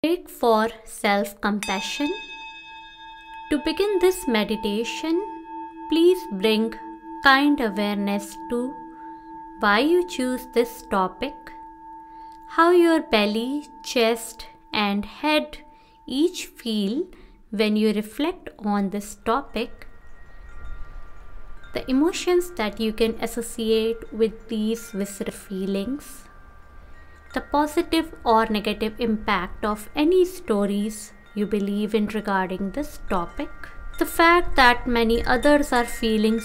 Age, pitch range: 20-39, 210-295 Hz